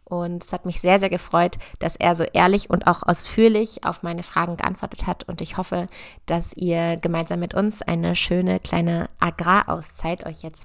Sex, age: female, 20-39